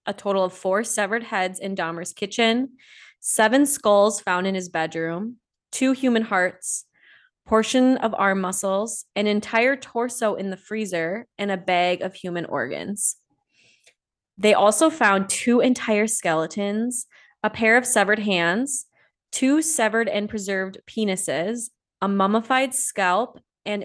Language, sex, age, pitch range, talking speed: English, female, 20-39, 180-220 Hz, 135 wpm